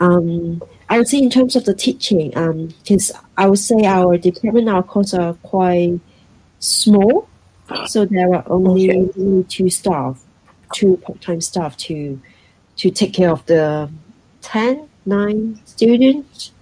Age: 40-59